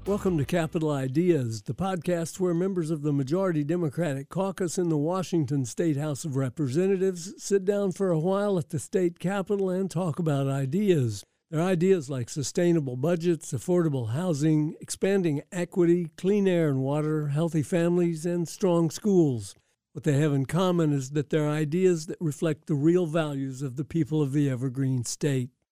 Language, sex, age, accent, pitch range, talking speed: English, male, 60-79, American, 145-180 Hz, 170 wpm